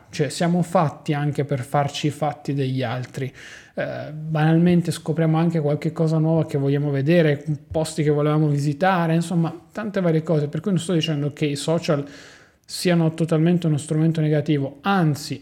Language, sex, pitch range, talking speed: Italian, male, 150-170 Hz, 165 wpm